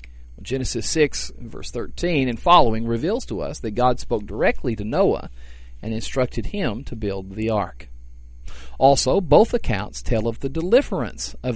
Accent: American